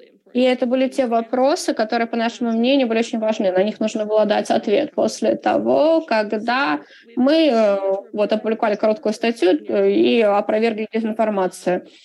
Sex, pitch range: female, 210-250 Hz